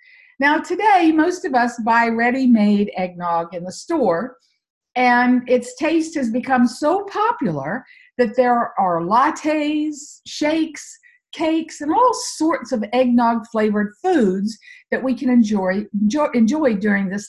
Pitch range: 210-305 Hz